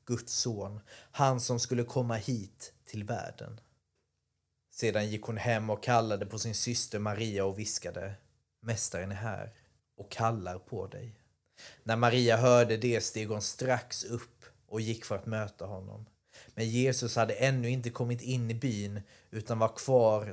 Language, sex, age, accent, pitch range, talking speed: Swedish, male, 30-49, native, 105-120 Hz, 160 wpm